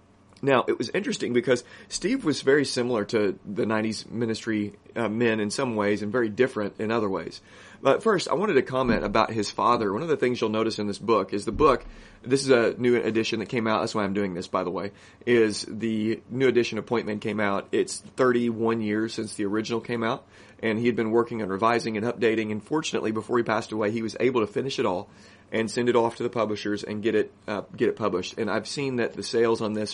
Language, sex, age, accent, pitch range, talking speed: English, male, 30-49, American, 100-115 Hz, 240 wpm